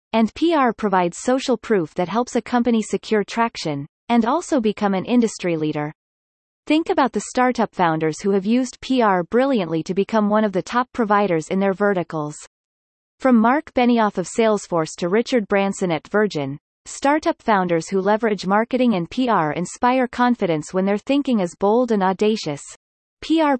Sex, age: female, 30-49